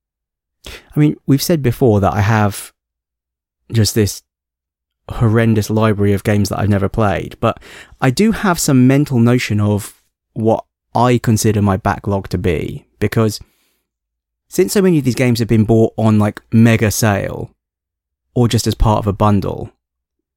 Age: 20-39